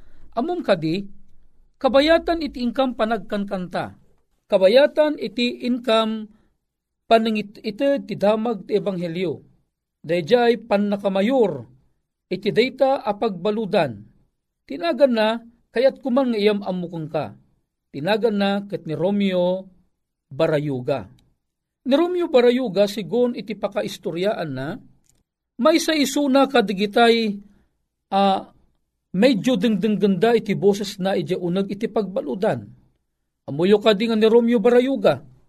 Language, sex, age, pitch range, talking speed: Filipino, male, 50-69, 185-240 Hz, 105 wpm